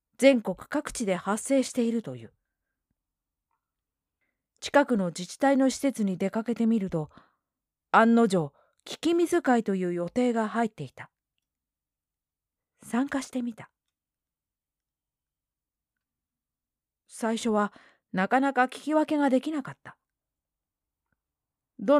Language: Japanese